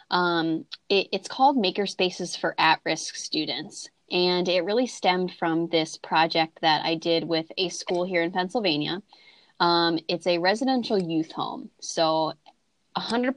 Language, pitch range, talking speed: English, 165-200 Hz, 145 wpm